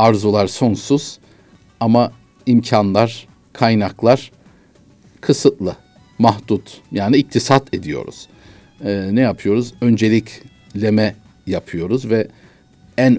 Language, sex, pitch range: Turkish, male, 105-140 Hz